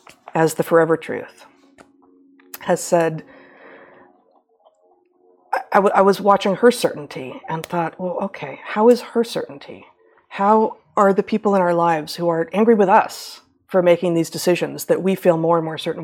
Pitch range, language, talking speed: 170-240 Hz, English, 165 wpm